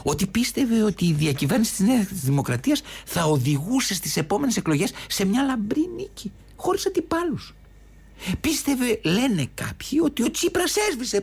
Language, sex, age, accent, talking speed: Greek, male, 60-79, Spanish, 140 wpm